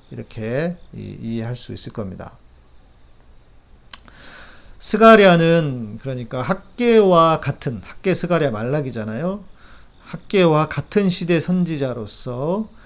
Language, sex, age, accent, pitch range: Korean, male, 40-59, native, 125-185 Hz